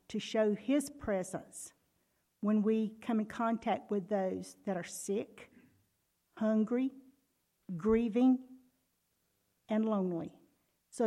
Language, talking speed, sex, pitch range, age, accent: English, 105 wpm, female, 180-225 Hz, 50-69, American